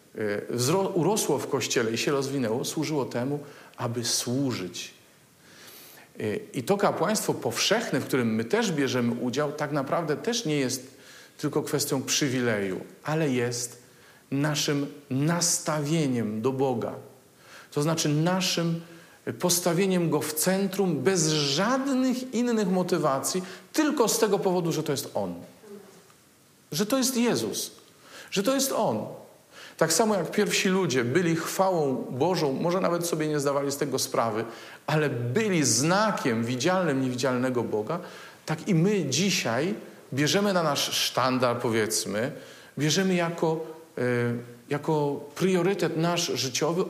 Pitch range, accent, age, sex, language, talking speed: 135-190 Hz, native, 40-59, male, Polish, 125 wpm